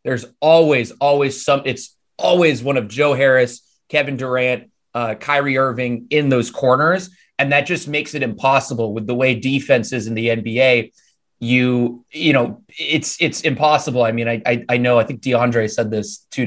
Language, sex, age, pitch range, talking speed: English, male, 20-39, 115-140 Hz, 180 wpm